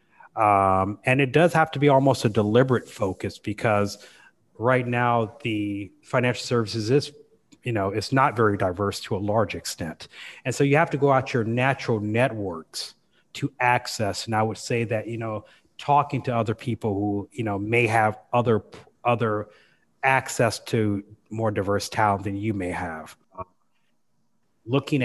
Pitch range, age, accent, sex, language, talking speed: 105-125 Hz, 30-49, American, male, English, 165 wpm